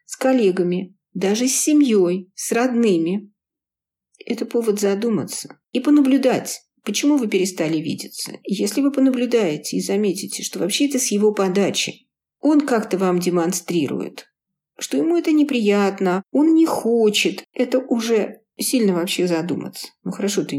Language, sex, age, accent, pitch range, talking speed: Russian, female, 50-69, native, 180-245 Hz, 135 wpm